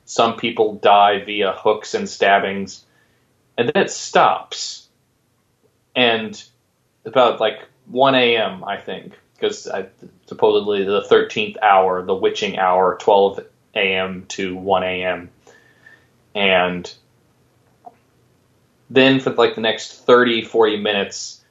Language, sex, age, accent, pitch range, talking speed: English, male, 20-39, American, 100-125 Hz, 110 wpm